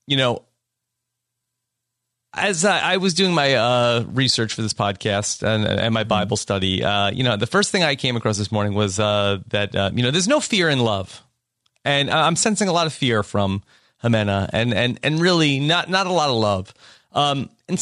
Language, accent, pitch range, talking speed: English, American, 120-180 Hz, 205 wpm